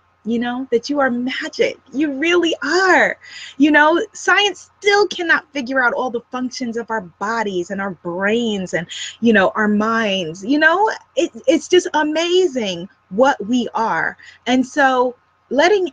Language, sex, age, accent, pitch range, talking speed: English, female, 20-39, American, 210-310 Hz, 155 wpm